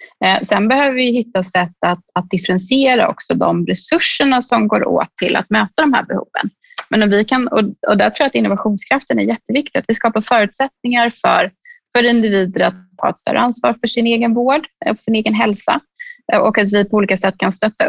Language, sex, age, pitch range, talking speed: Swedish, female, 20-39, 190-245 Hz, 200 wpm